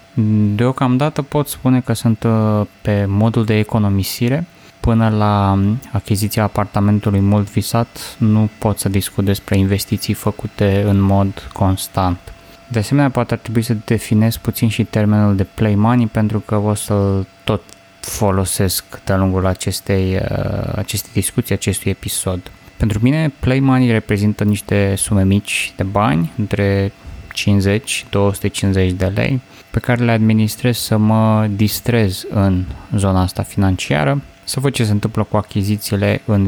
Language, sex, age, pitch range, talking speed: Romanian, male, 20-39, 95-115 Hz, 140 wpm